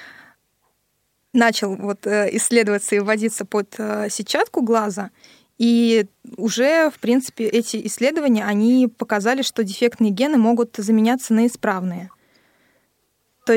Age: 20-39